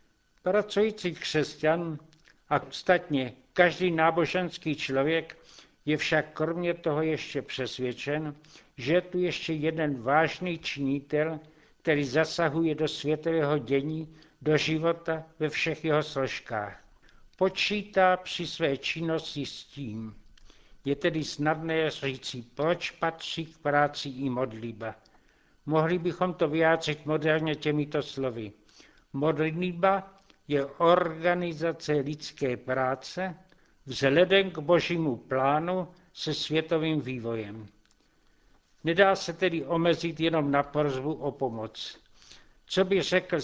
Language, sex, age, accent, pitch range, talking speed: Czech, male, 60-79, native, 145-165 Hz, 110 wpm